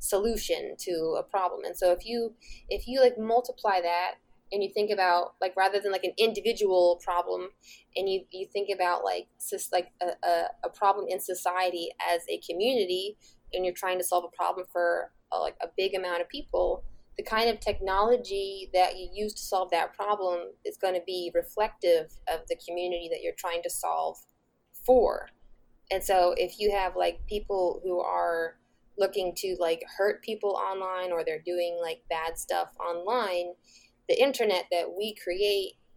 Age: 10-29